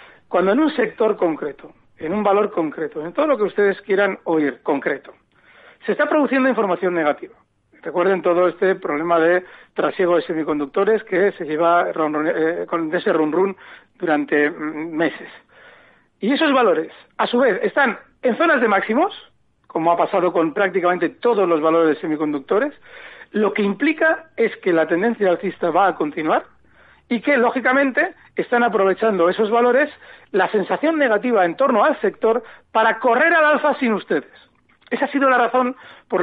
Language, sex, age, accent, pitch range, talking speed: Spanish, male, 60-79, Spanish, 180-255 Hz, 160 wpm